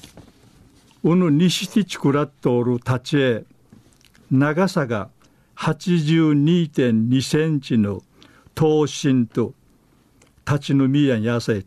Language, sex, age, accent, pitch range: Japanese, male, 60-79, native, 120-155 Hz